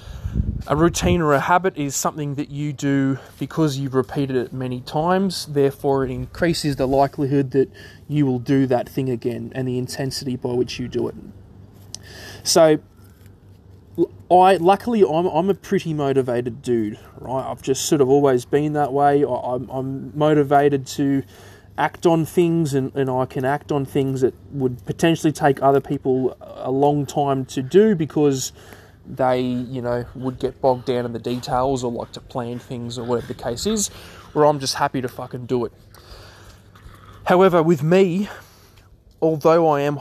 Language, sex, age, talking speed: English, male, 20-39, 170 wpm